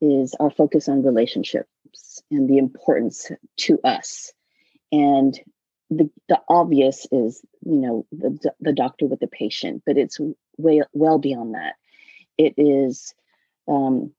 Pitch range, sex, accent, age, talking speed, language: 135-160 Hz, female, American, 30-49, 135 wpm, English